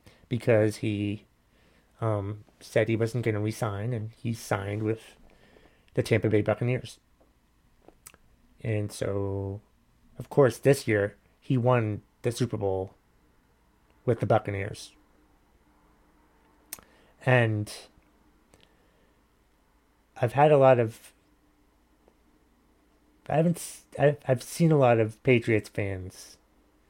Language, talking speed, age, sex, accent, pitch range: English, 105 wpm, 30-49, male, American, 100-125 Hz